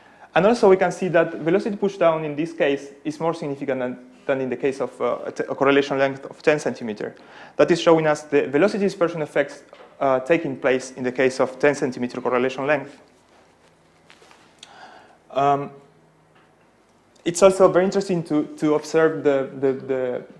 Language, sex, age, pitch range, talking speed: French, male, 30-49, 140-175 Hz, 170 wpm